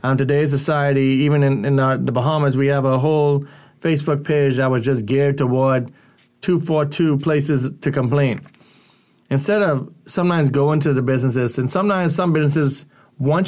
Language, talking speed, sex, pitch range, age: English, 160 wpm, male, 130-150 Hz, 30-49